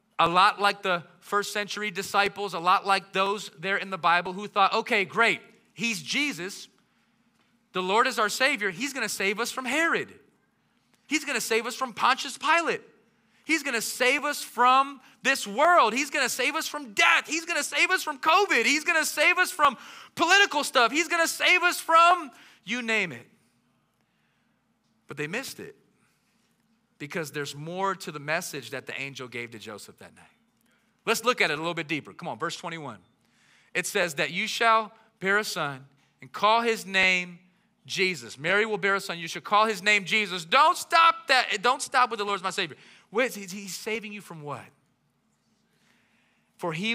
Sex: male